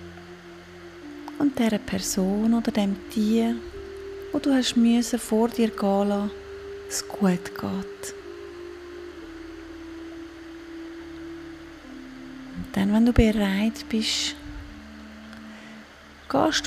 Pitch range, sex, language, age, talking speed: 225-335 Hz, female, German, 30-49, 80 wpm